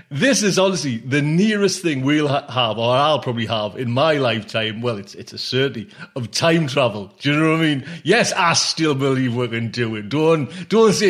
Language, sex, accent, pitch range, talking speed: English, male, British, 130-185 Hz, 230 wpm